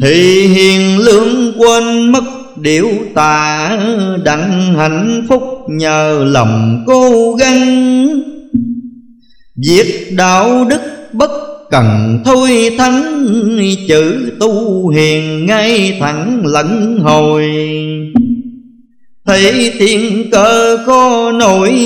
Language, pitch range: Vietnamese, 155-235 Hz